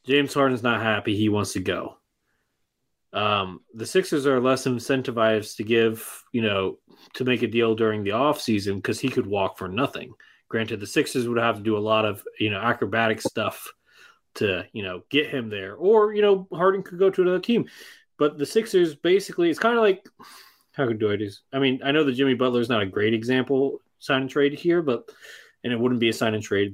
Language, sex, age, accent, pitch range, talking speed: English, male, 30-49, American, 110-140 Hz, 220 wpm